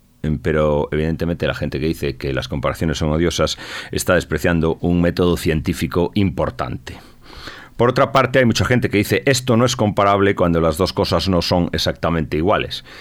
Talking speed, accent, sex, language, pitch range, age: 170 wpm, Spanish, male, Spanish, 85-115 Hz, 40-59